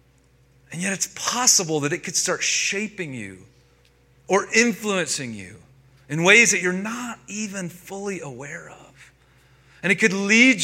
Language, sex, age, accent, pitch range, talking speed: English, male, 40-59, American, 130-190 Hz, 145 wpm